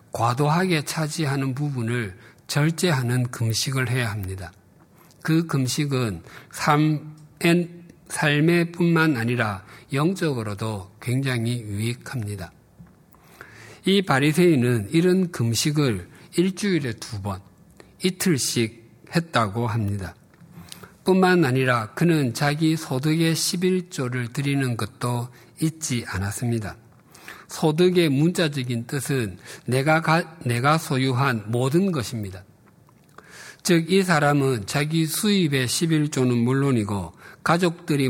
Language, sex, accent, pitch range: Korean, male, native, 120-160 Hz